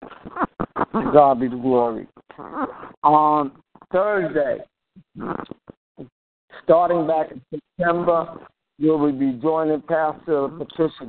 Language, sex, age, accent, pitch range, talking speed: English, male, 60-79, American, 140-160 Hz, 85 wpm